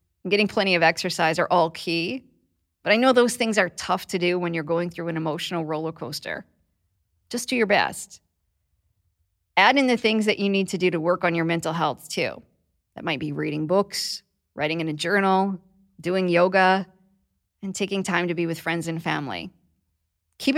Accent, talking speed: American, 190 wpm